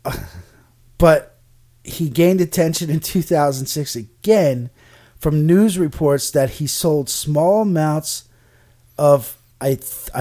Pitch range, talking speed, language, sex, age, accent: 120-160 Hz, 110 wpm, English, male, 30-49, American